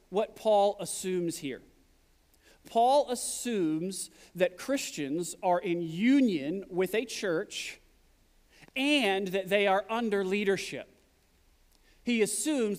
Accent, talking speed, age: American, 105 wpm, 40-59